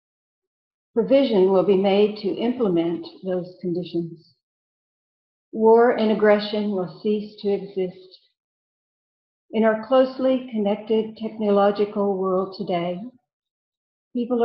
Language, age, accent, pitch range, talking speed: English, 60-79, American, 185-220 Hz, 95 wpm